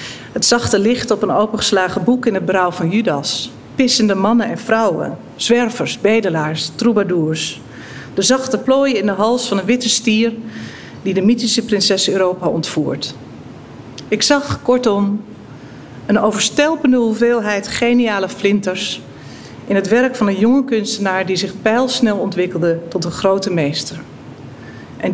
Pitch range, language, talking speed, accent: 175-225 Hz, Dutch, 140 wpm, Dutch